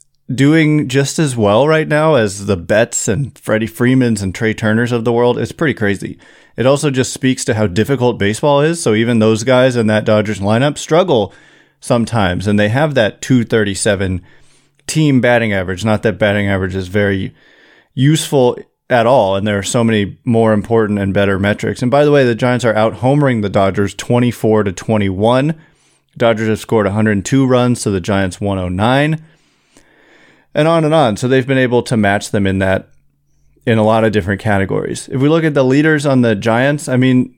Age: 30-49